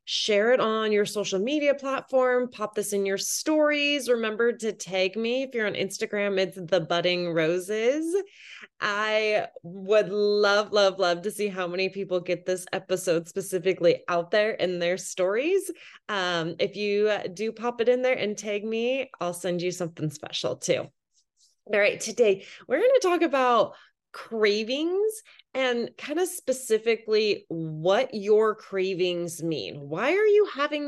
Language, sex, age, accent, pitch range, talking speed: English, female, 20-39, American, 185-255 Hz, 155 wpm